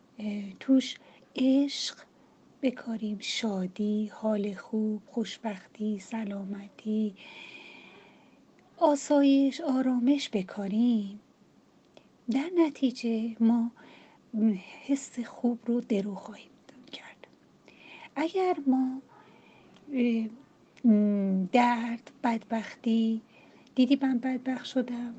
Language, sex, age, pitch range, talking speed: Persian, female, 30-49, 220-265 Hz, 65 wpm